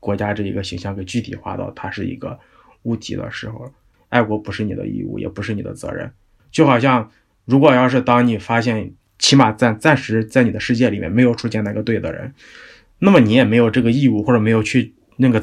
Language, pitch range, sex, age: Chinese, 105-130 Hz, male, 20-39